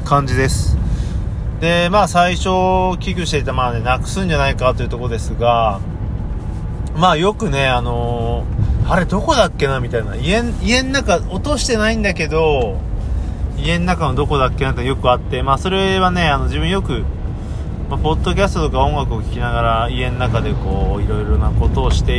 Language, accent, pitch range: Japanese, native, 115-165 Hz